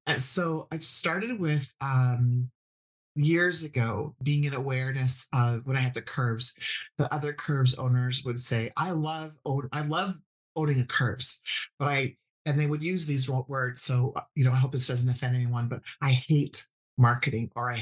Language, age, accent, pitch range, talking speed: English, 40-59, American, 125-150 Hz, 180 wpm